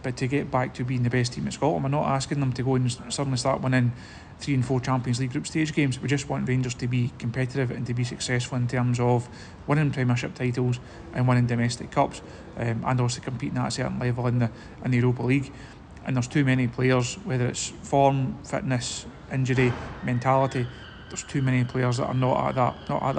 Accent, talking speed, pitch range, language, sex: British, 220 wpm, 125-135 Hz, English, male